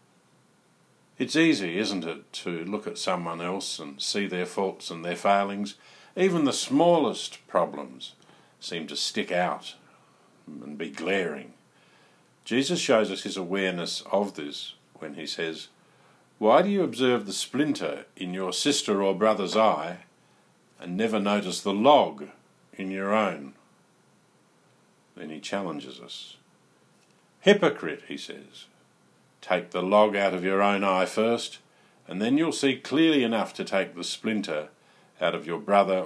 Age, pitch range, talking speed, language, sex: 50-69, 95-115 Hz, 145 wpm, English, male